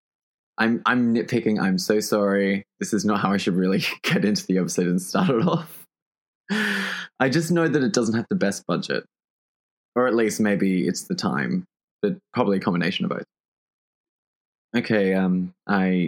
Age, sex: 20-39, male